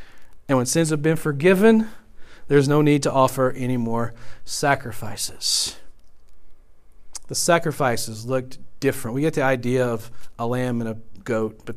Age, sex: 40-59, male